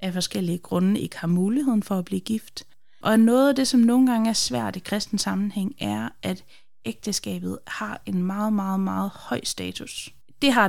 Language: Danish